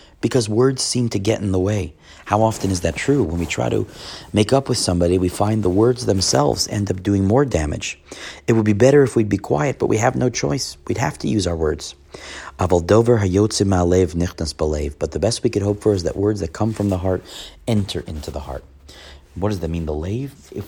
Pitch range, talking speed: 80-105 Hz, 220 wpm